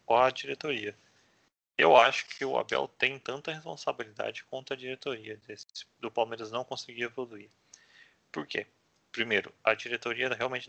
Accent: Brazilian